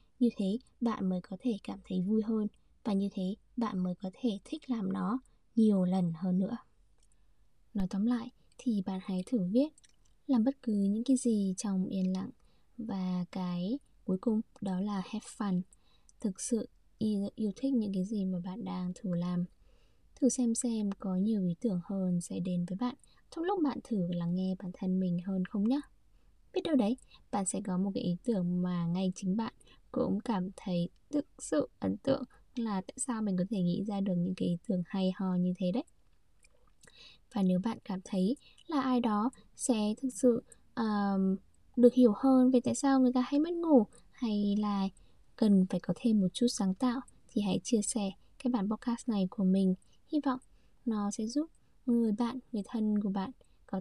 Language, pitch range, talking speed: Vietnamese, 190-245 Hz, 200 wpm